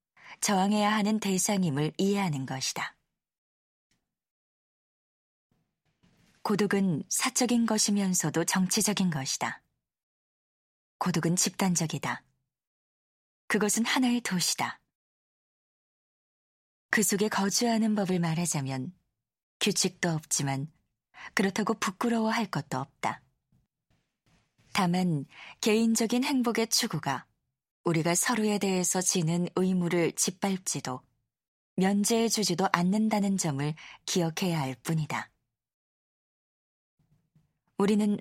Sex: female